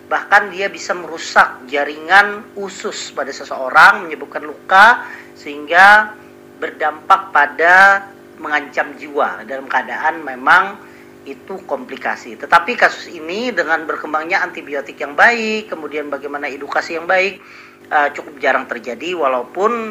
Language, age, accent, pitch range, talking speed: Indonesian, 40-59, native, 155-220 Hz, 110 wpm